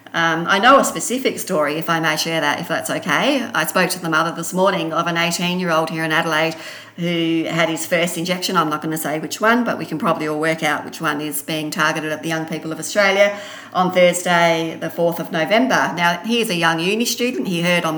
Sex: female